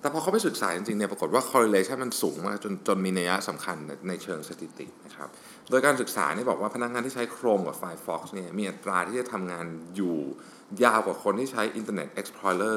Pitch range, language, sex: 95-135 Hz, Thai, male